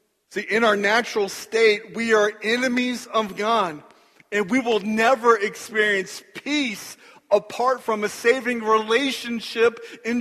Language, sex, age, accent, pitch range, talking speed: English, male, 40-59, American, 200-235 Hz, 130 wpm